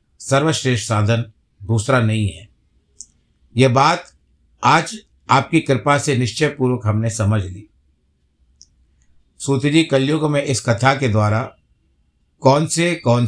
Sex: male